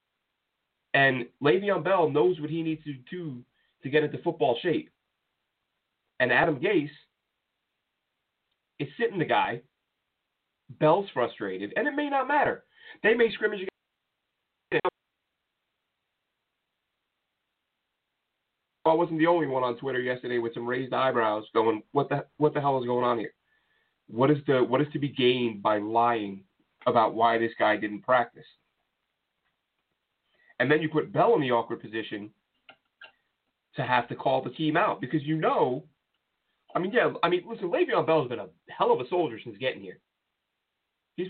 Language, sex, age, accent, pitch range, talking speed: English, male, 30-49, American, 120-160 Hz, 155 wpm